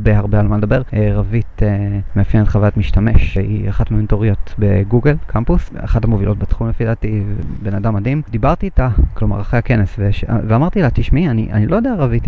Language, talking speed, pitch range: Hebrew, 180 wpm, 100-120 Hz